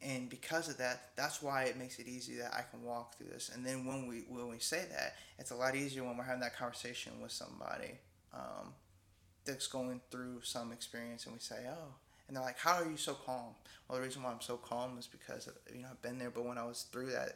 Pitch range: 120-130 Hz